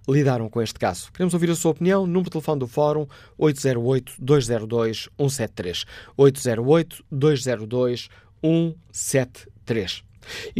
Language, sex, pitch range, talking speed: Portuguese, male, 120-150 Hz, 90 wpm